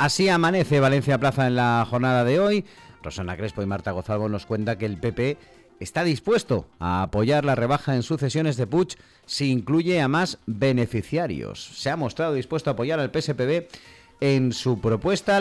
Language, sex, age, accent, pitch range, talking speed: Spanish, male, 40-59, Spanish, 100-140 Hz, 175 wpm